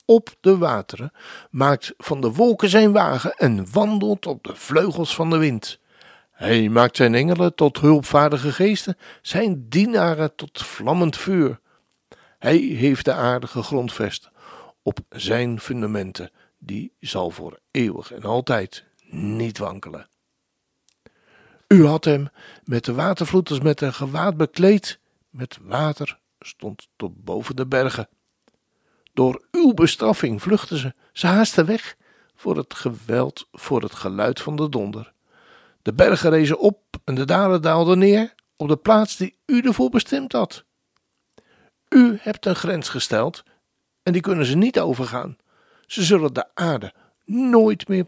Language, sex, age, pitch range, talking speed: Dutch, male, 60-79, 130-195 Hz, 140 wpm